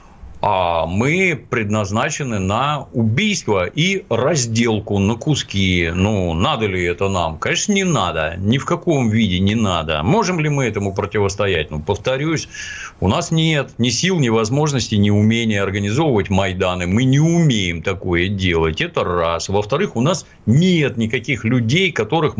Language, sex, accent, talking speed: Russian, male, native, 145 wpm